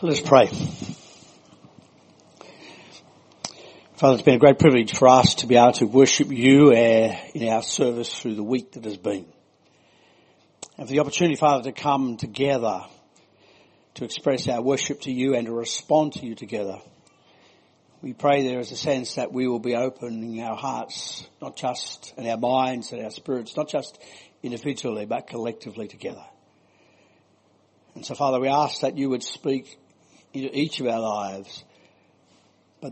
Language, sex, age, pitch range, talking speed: English, male, 60-79, 120-150 Hz, 160 wpm